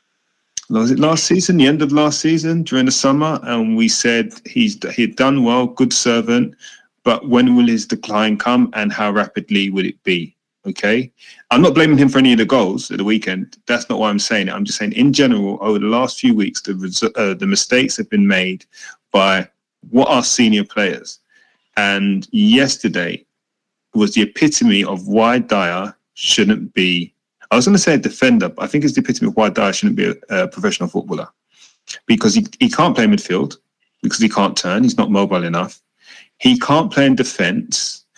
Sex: male